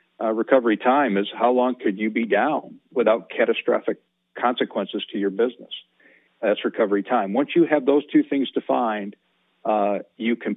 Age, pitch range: 50-69, 105-125 Hz